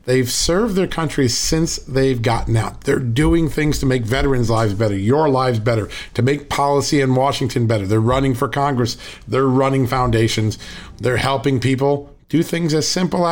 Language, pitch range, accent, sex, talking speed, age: English, 115-140 Hz, American, male, 175 wpm, 40-59